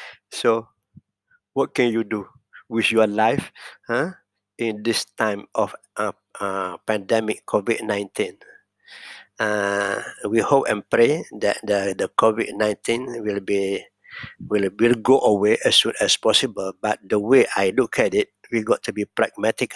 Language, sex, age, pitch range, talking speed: English, male, 60-79, 105-115 Hz, 145 wpm